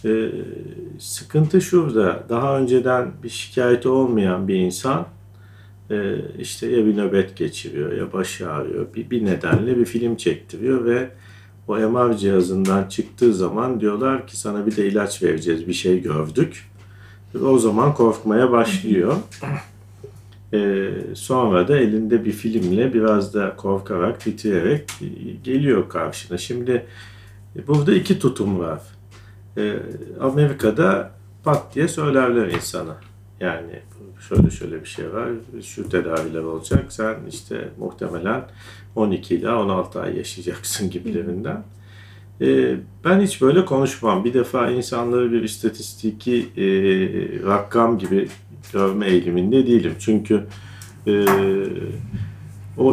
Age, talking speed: 50-69, 115 wpm